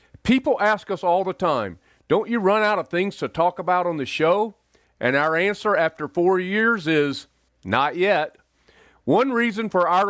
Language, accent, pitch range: English, American, 155-205 Hz